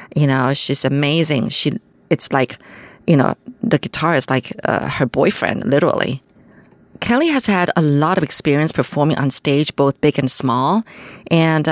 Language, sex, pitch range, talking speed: German, female, 140-180 Hz, 165 wpm